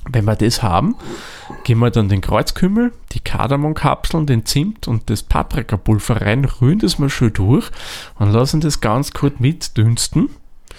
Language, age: German, 30-49